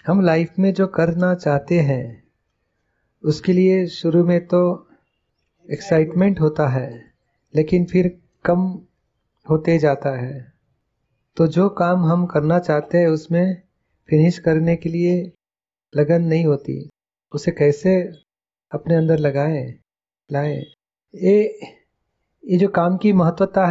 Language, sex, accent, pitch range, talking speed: Gujarati, male, native, 155-185 Hz, 120 wpm